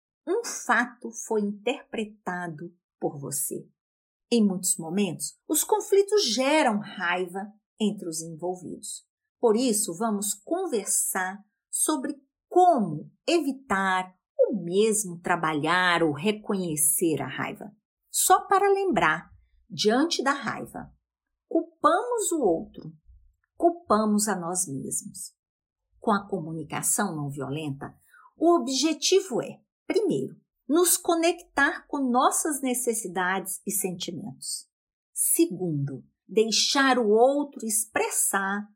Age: 50-69